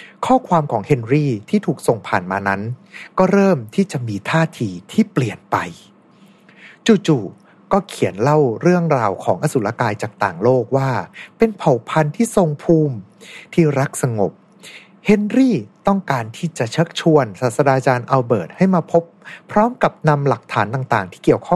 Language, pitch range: Thai, 120-180 Hz